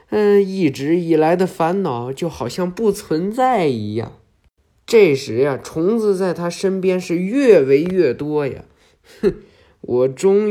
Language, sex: Chinese, male